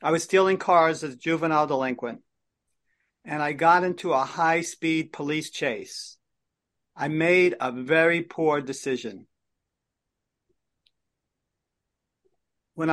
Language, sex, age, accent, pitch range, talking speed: English, male, 50-69, American, 135-165 Hz, 105 wpm